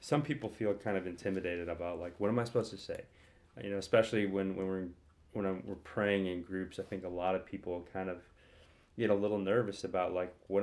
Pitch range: 90-105 Hz